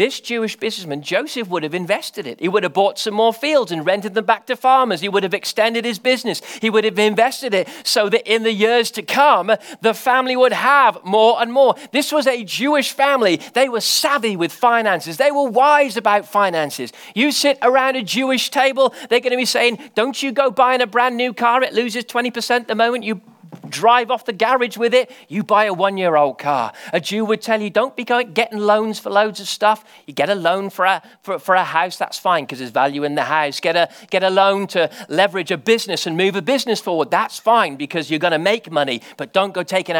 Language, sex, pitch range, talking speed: English, male, 180-245 Hz, 235 wpm